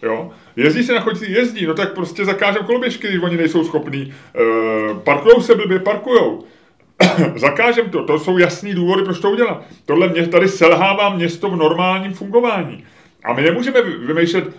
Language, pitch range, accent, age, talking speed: Czech, 140-175 Hz, native, 30-49, 170 wpm